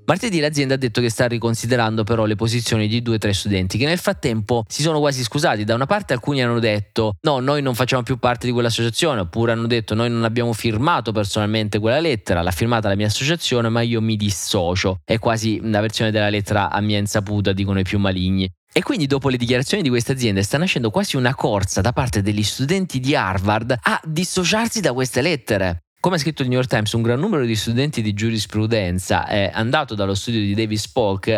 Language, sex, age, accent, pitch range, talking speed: Italian, male, 20-39, native, 105-125 Hz, 215 wpm